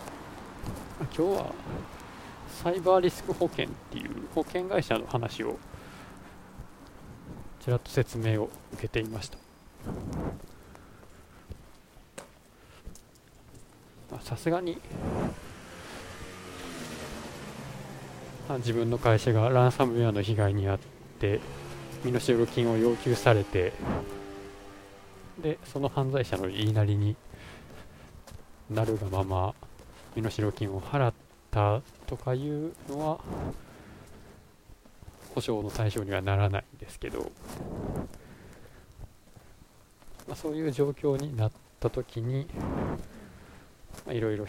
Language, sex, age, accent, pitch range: Japanese, male, 20-39, native, 100-130 Hz